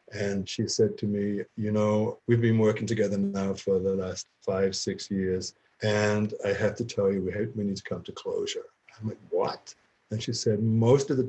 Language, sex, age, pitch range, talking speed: English, male, 50-69, 95-120 Hz, 215 wpm